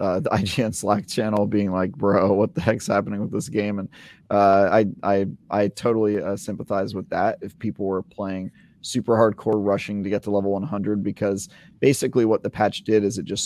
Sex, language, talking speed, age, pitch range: male, English, 200 wpm, 30-49, 95-105 Hz